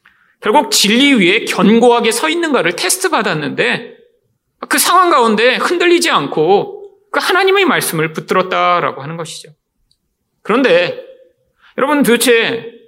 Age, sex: 40-59, male